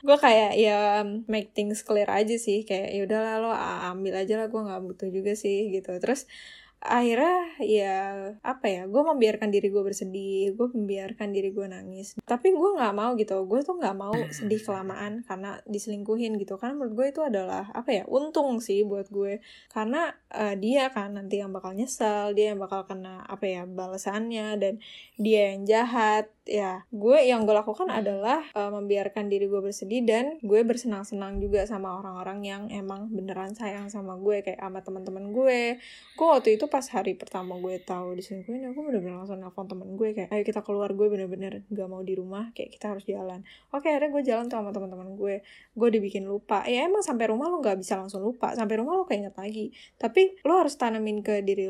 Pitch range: 195-230 Hz